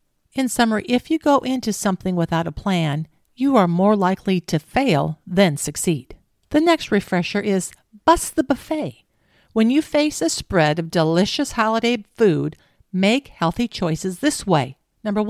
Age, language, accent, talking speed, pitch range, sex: 50-69, English, American, 155 wpm, 175-245 Hz, female